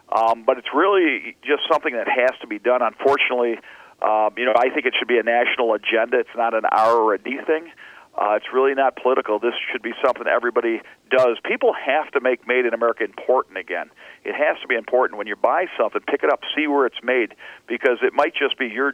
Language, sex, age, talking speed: English, male, 50-69, 230 wpm